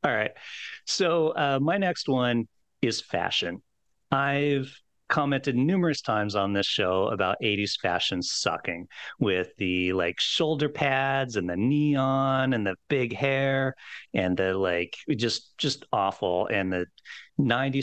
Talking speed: 135 wpm